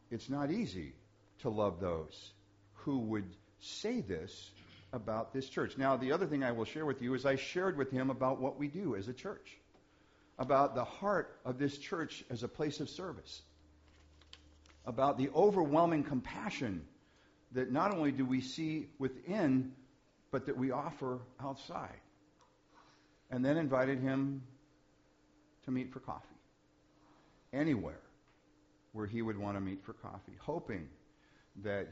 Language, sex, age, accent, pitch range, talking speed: English, male, 50-69, American, 100-135 Hz, 150 wpm